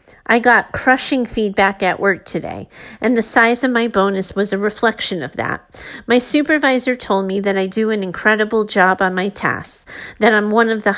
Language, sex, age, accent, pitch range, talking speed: English, female, 40-59, American, 195-245 Hz, 195 wpm